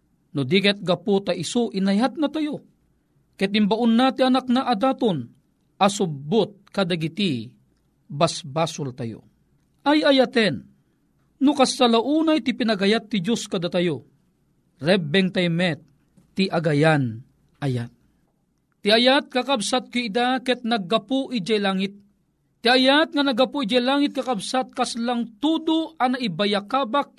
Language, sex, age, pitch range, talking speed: Filipino, male, 40-59, 195-270 Hz, 110 wpm